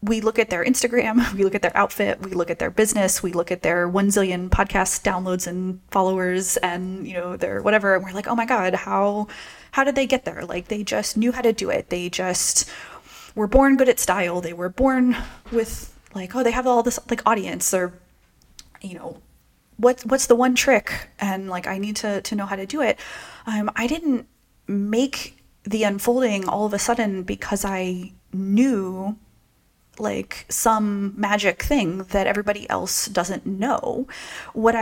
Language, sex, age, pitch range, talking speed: English, female, 20-39, 190-245 Hz, 190 wpm